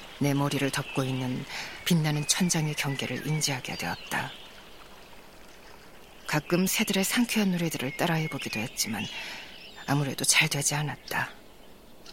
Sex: female